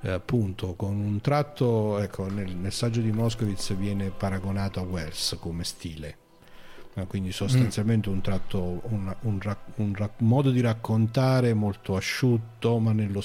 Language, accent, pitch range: Italian, native, 100-125 Hz